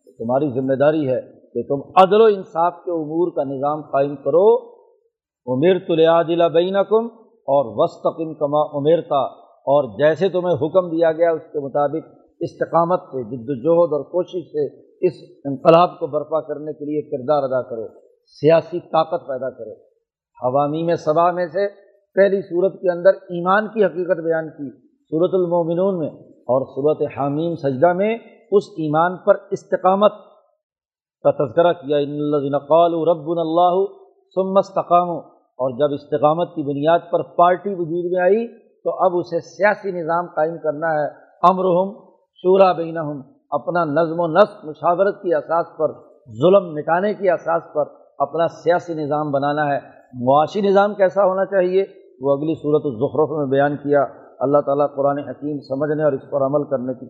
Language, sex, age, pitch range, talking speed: Urdu, male, 50-69, 150-185 Hz, 155 wpm